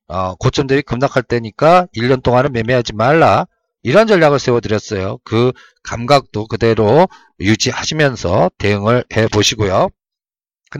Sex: male